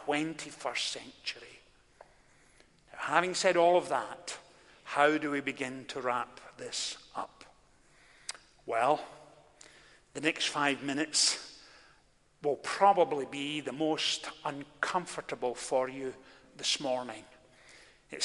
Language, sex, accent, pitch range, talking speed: English, male, British, 140-180 Hz, 100 wpm